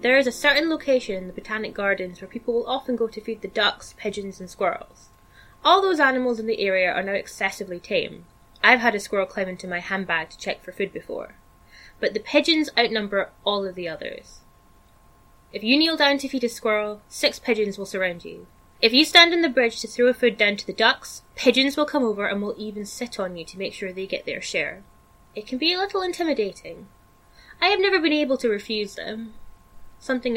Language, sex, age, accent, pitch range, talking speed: English, female, 10-29, British, 195-260 Hz, 215 wpm